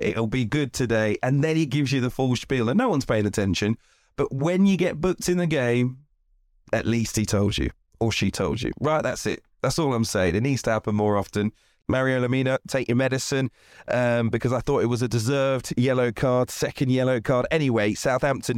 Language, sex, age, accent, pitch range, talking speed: English, male, 30-49, British, 110-135 Hz, 215 wpm